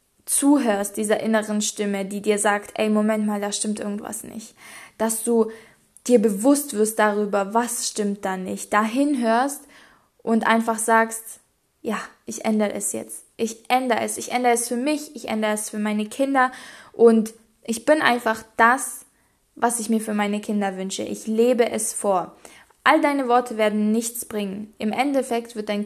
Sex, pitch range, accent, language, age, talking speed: female, 215-255 Hz, German, German, 20-39, 170 wpm